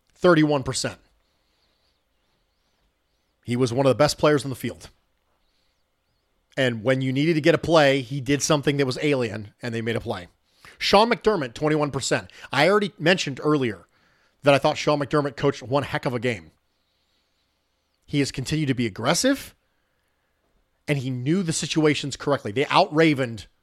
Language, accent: English, American